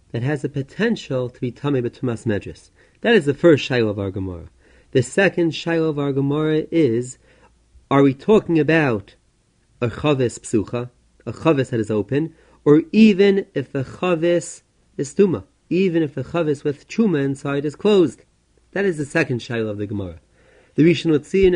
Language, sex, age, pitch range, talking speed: English, male, 30-49, 125-170 Hz, 175 wpm